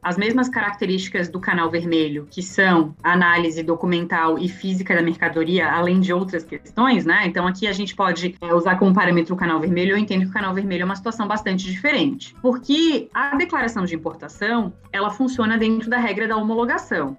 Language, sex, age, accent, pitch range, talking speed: Portuguese, female, 20-39, Brazilian, 190-280 Hz, 185 wpm